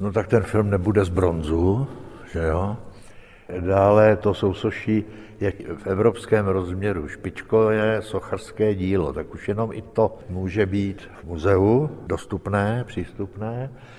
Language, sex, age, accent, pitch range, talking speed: Czech, male, 60-79, native, 90-110 Hz, 135 wpm